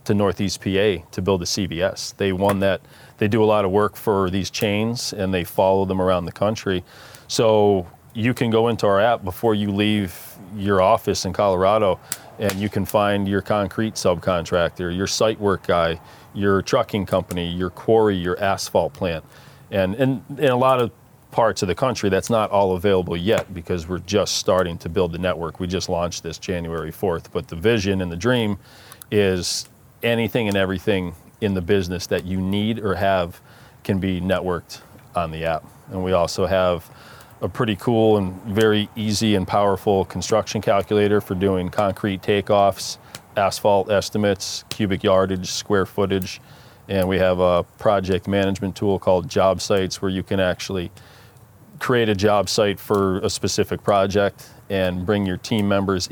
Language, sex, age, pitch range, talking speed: English, male, 40-59, 95-110 Hz, 175 wpm